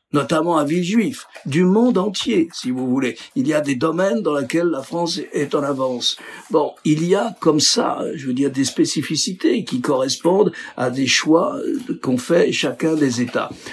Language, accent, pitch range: French, French, 135-170 Hz